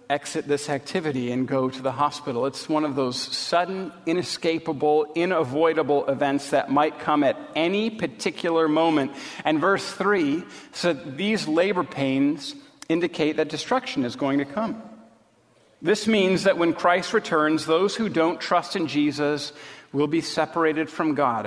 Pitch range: 135-180 Hz